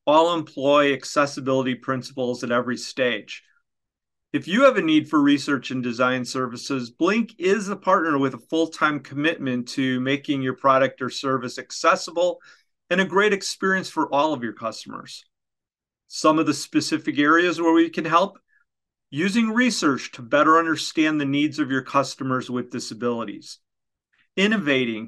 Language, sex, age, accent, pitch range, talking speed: English, male, 40-59, American, 130-175 Hz, 150 wpm